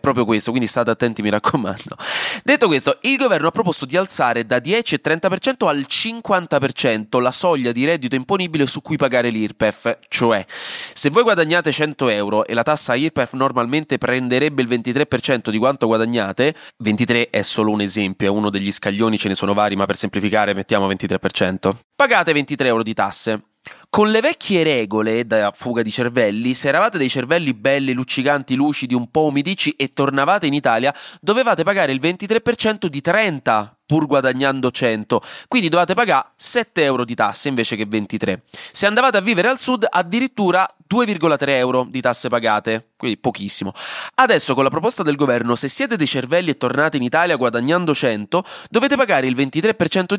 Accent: native